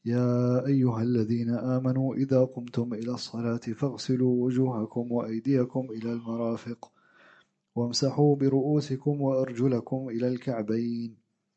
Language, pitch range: English, 120-140 Hz